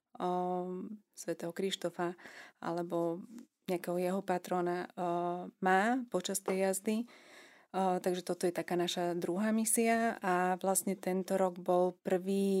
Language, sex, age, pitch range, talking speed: Slovak, female, 30-49, 180-195 Hz, 120 wpm